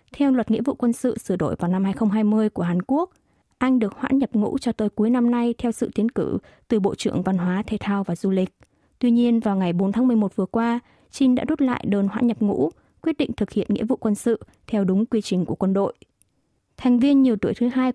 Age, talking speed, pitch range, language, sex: 20-39, 255 wpm, 200-250 Hz, Vietnamese, female